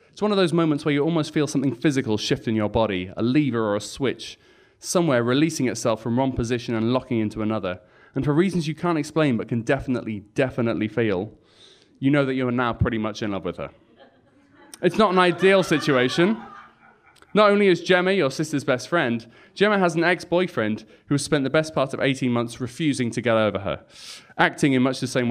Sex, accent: male, British